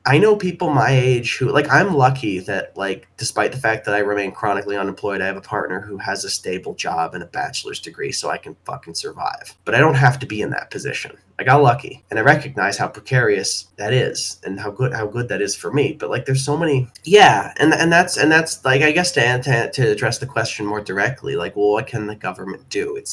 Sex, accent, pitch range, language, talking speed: male, American, 105-145 Hz, English, 245 wpm